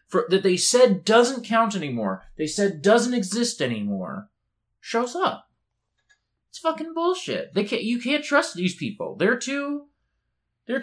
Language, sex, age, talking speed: English, male, 20-39, 150 wpm